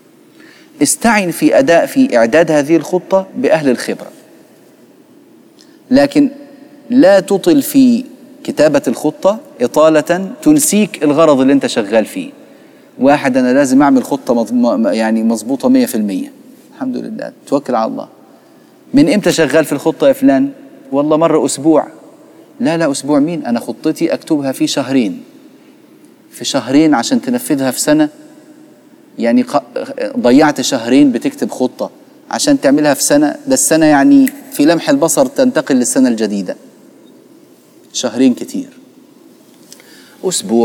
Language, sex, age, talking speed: Arabic, male, 30-49, 120 wpm